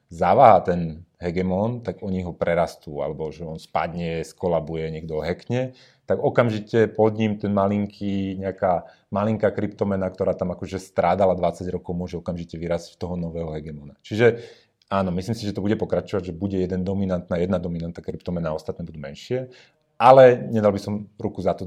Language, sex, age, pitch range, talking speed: Slovak, male, 30-49, 85-105 Hz, 170 wpm